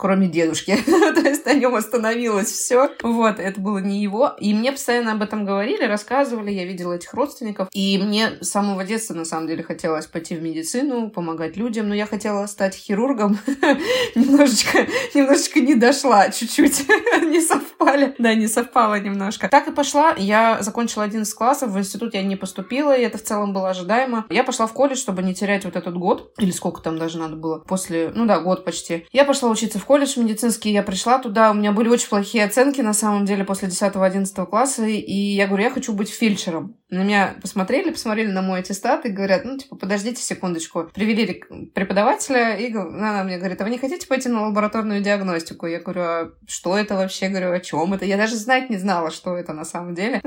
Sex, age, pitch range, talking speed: female, 20-39, 190-245 Hz, 205 wpm